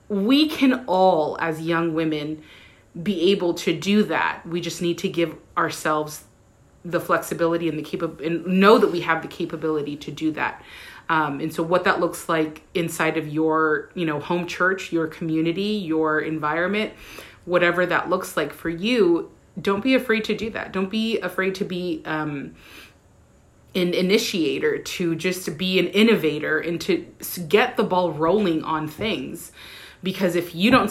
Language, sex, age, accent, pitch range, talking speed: English, female, 30-49, American, 160-195 Hz, 170 wpm